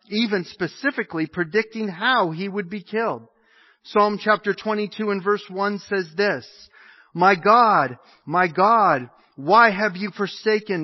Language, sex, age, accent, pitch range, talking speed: English, male, 40-59, American, 180-225 Hz, 135 wpm